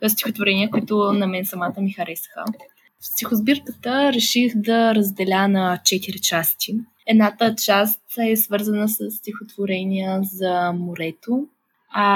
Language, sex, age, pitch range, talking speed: Bulgarian, female, 20-39, 190-235 Hz, 115 wpm